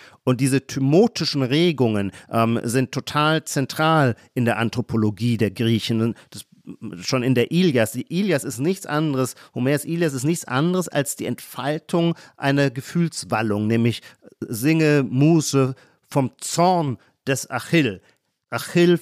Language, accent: German, German